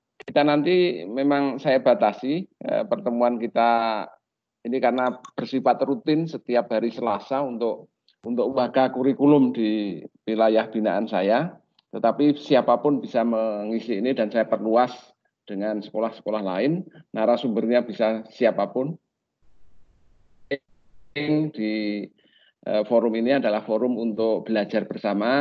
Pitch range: 110-140 Hz